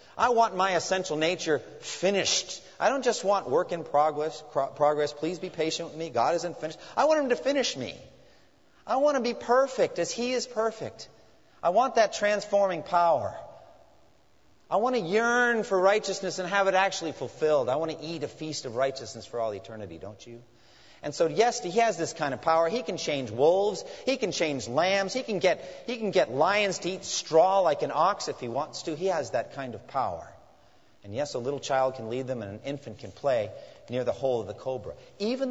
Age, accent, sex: 30-49, American, male